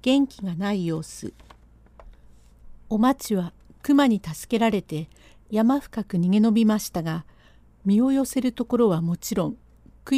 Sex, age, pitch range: female, 50-69, 165-245 Hz